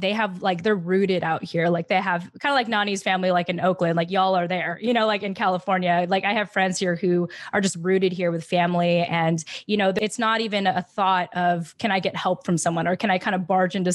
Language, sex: English, female